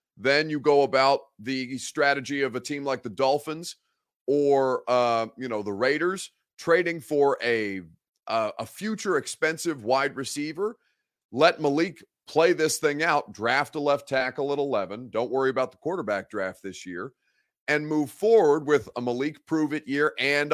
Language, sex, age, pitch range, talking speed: English, male, 30-49, 115-145 Hz, 165 wpm